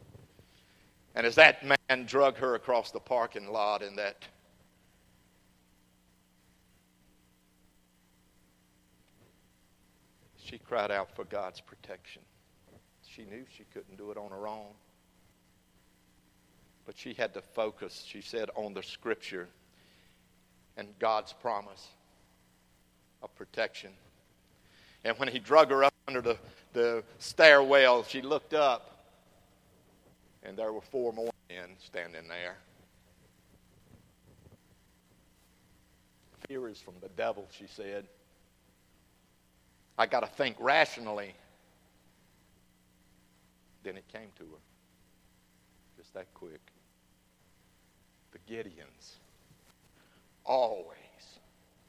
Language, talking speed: English, 100 wpm